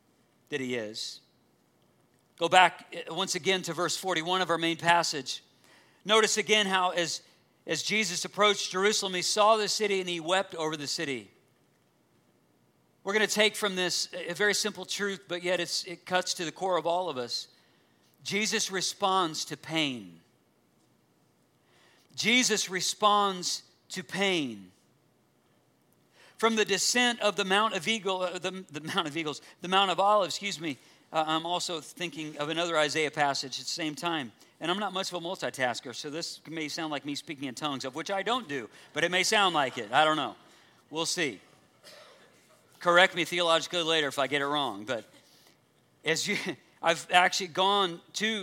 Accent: American